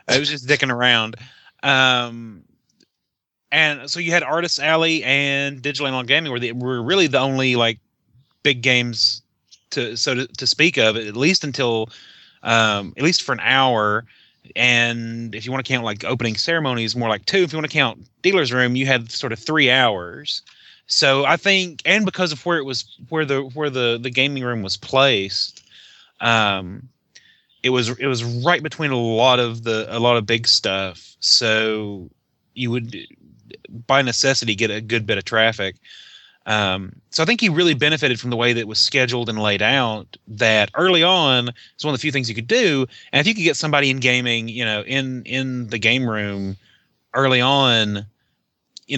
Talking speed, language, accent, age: 190 wpm, English, American, 30-49